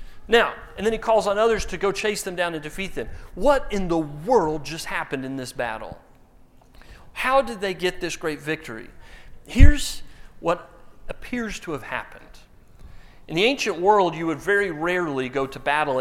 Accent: American